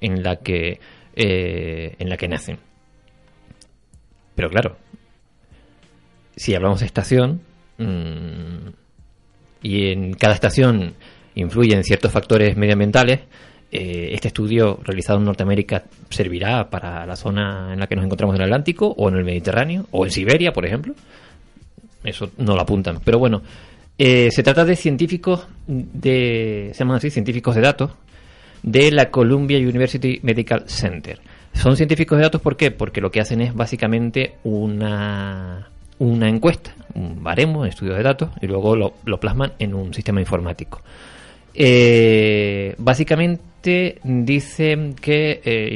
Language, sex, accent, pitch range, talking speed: Spanish, male, Spanish, 95-125 Hz, 140 wpm